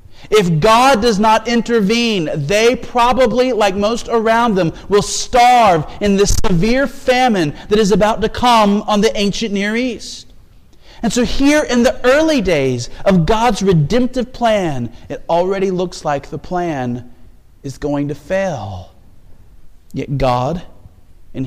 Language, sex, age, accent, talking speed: English, male, 40-59, American, 145 wpm